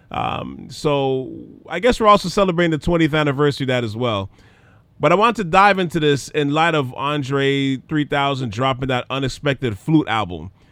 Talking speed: 170 wpm